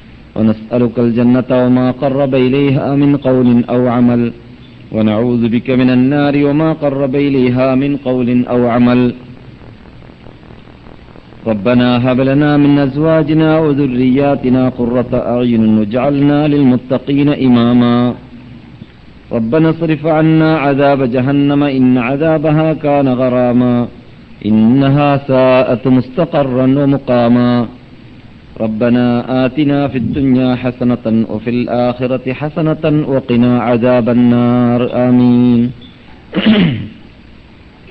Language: Malayalam